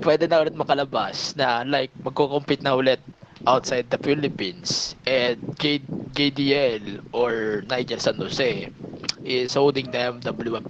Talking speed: 130 wpm